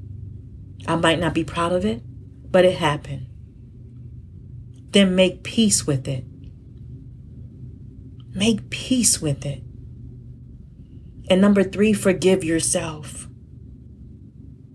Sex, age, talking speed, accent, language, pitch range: female, 40-59, 100 wpm, American, English, 125-180 Hz